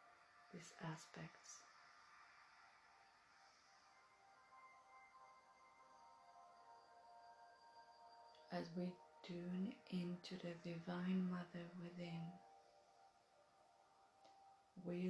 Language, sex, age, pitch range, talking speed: English, female, 30-49, 165-195 Hz, 45 wpm